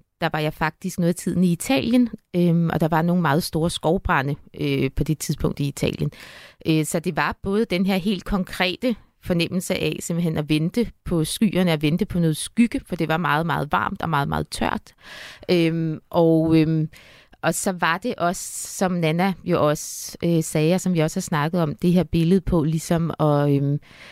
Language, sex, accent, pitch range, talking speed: Danish, female, native, 155-185 Hz, 205 wpm